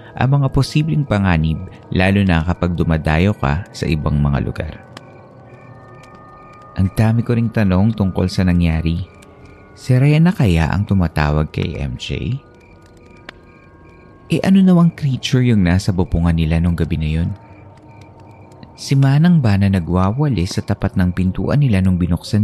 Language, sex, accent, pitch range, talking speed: Filipino, male, native, 85-115 Hz, 140 wpm